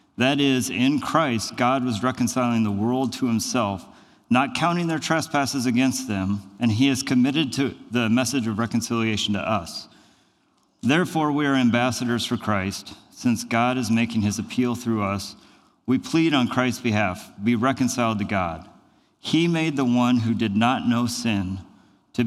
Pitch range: 105-130 Hz